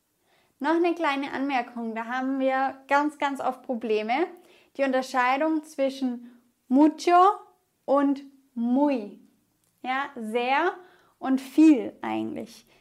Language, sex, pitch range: English, female, 250-325 Hz